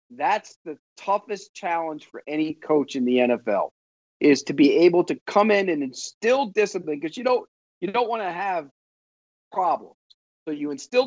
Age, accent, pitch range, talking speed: 40-59, American, 150-245 Hz, 175 wpm